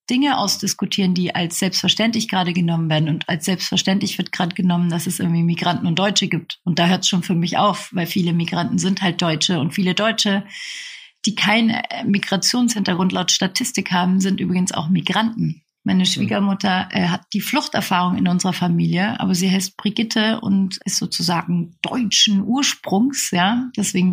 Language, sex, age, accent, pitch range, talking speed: German, female, 40-59, German, 175-215 Hz, 170 wpm